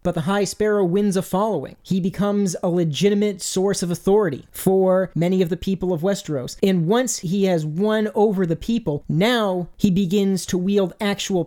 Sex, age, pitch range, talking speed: male, 30-49, 175-200 Hz, 185 wpm